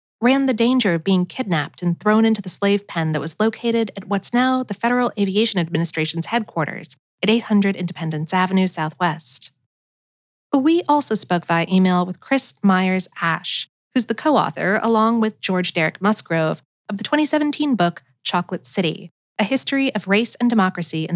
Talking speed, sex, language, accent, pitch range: 165 wpm, female, English, American, 175-235 Hz